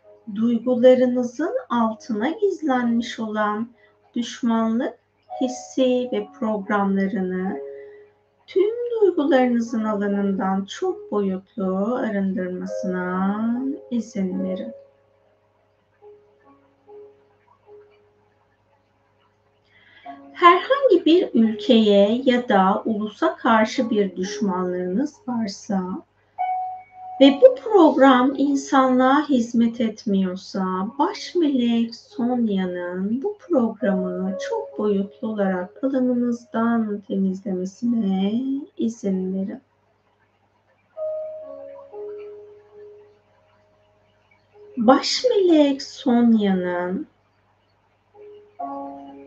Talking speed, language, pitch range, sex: 55 wpm, Turkish, 190-275 Hz, female